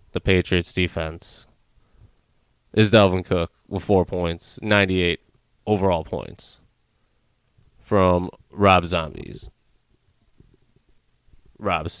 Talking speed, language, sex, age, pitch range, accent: 80 wpm, English, male, 20-39, 95-110 Hz, American